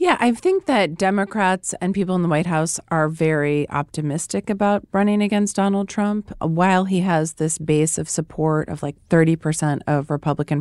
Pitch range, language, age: 150-175 Hz, English, 30-49